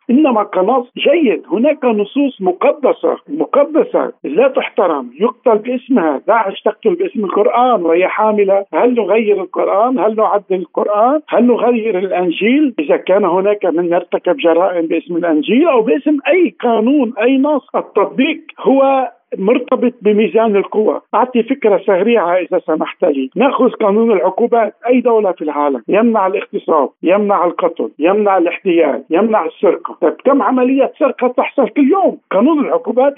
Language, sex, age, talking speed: Arabic, male, 50-69, 135 wpm